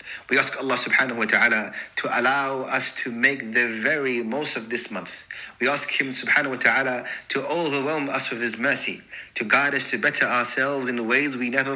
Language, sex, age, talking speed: English, male, 30-49, 200 wpm